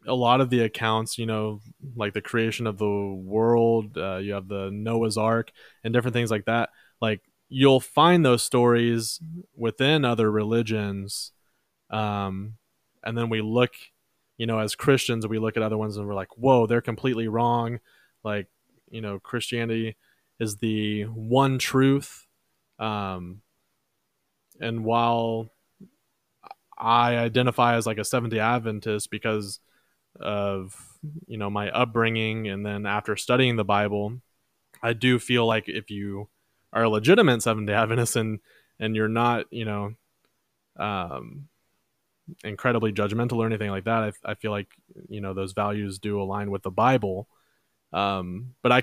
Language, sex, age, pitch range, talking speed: English, male, 20-39, 105-120 Hz, 150 wpm